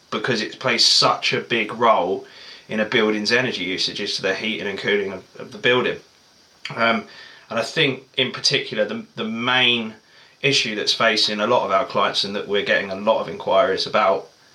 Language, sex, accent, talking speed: English, male, British, 195 wpm